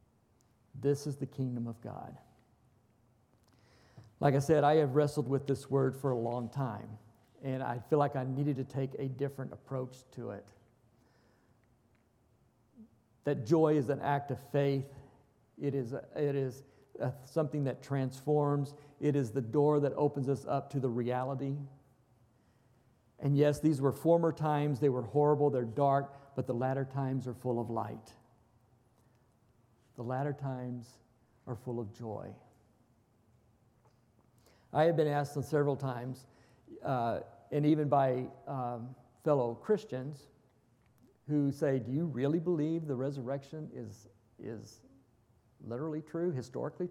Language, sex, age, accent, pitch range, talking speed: English, male, 50-69, American, 120-140 Hz, 140 wpm